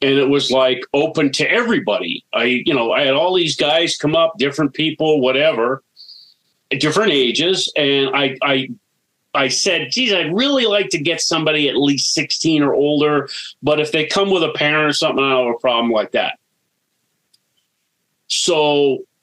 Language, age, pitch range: English, 40-59, 130-165 Hz